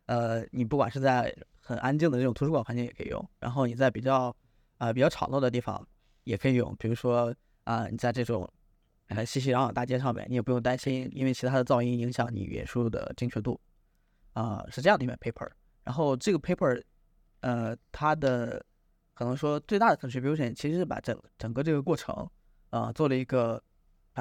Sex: male